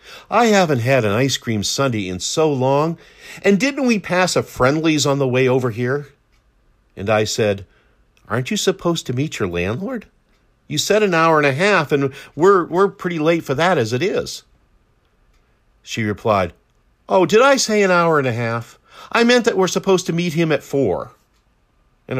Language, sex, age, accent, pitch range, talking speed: English, male, 50-69, American, 105-165 Hz, 190 wpm